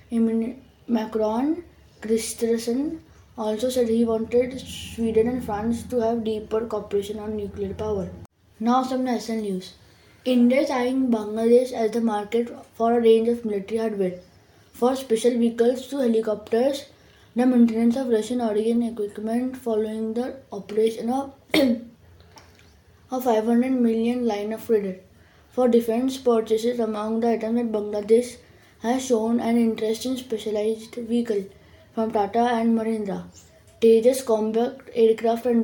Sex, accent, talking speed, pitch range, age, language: female, Indian, 130 wpm, 215-240 Hz, 20-39, English